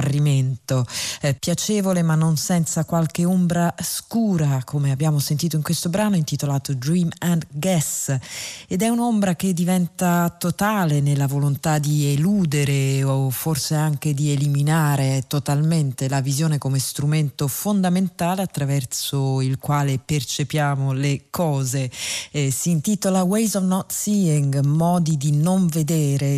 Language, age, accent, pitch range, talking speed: Italian, 40-59, native, 140-170 Hz, 125 wpm